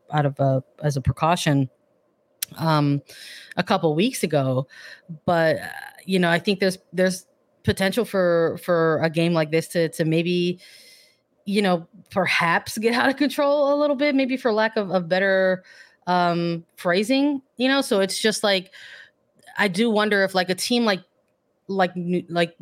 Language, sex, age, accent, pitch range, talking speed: English, female, 20-39, American, 160-190 Hz, 165 wpm